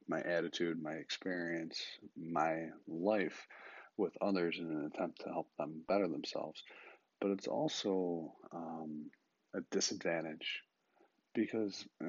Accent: American